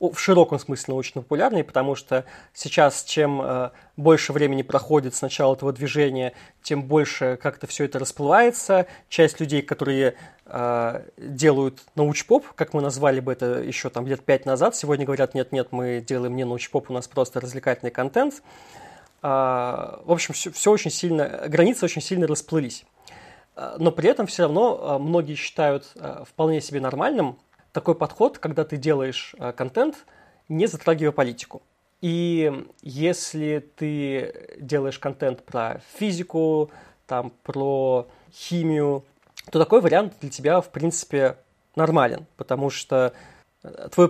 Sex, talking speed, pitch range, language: male, 135 wpm, 135-165 Hz, Russian